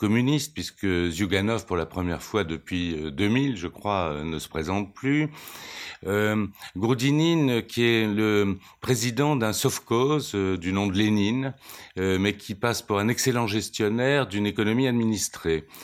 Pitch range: 90-125 Hz